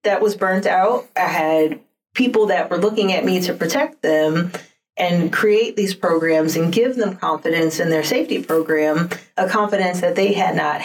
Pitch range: 160-225 Hz